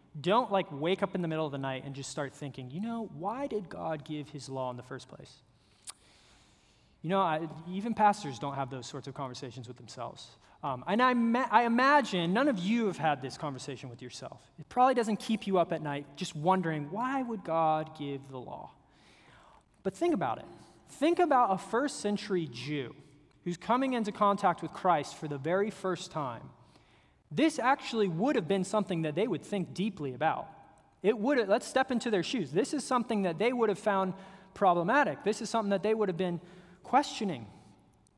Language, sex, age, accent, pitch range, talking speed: English, male, 20-39, American, 155-235 Hz, 200 wpm